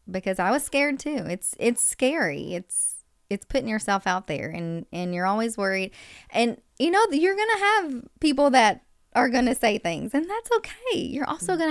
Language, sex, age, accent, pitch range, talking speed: English, female, 20-39, American, 185-250 Hz, 200 wpm